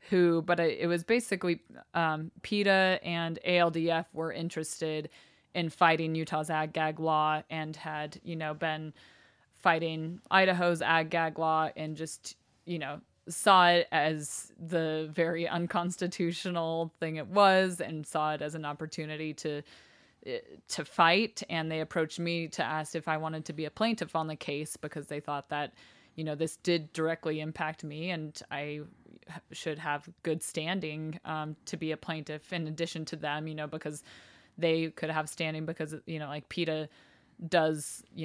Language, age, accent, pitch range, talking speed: English, 20-39, American, 155-170 Hz, 160 wpm